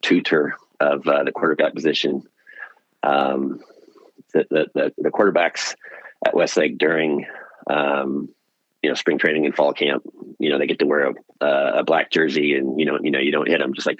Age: 40-59